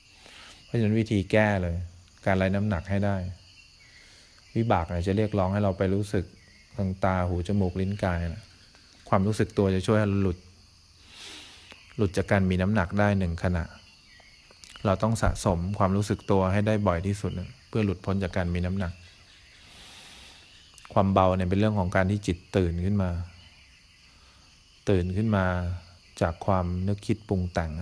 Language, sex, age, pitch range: English, male, 20-39, 90-100 Hz